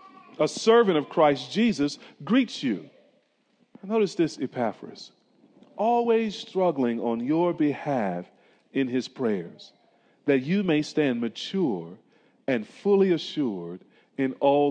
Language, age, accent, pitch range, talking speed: English, 40-59, American, 130-205 Hz, 115 wpm